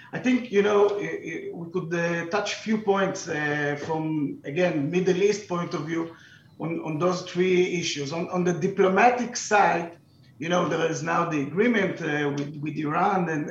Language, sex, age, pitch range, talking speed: English, male, 50-69, 155-185 Hz, 180 wpm